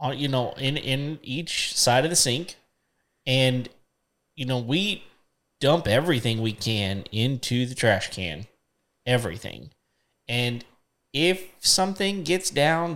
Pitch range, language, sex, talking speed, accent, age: 105-135 Hz, English, male, 125 wpm, American, 30-49